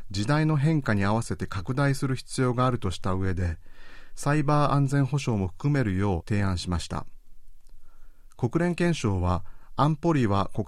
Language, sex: Japanese, male